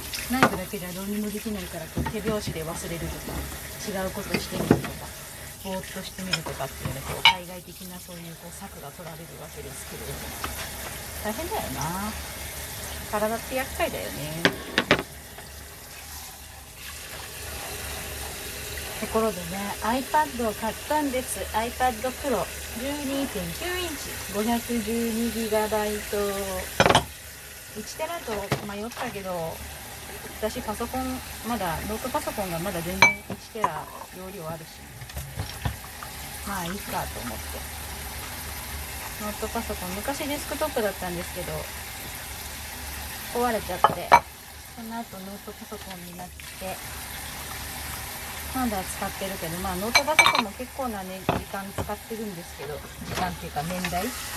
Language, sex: Japanese, female